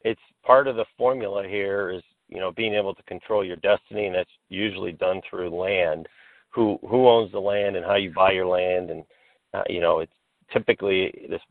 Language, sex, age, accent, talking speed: English, male, 50-69, American, 205 wpm